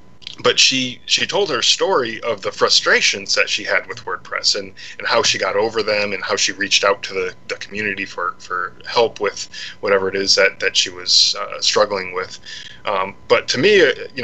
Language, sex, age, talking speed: English, male, 20-39, 205 wpm